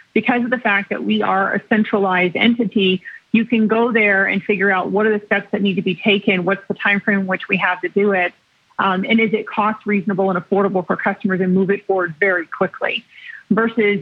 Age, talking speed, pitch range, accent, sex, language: 30-49, 230 wpm, 195-220 Hz, American, female, English